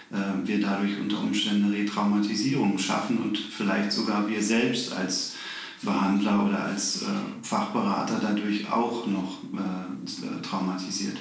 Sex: male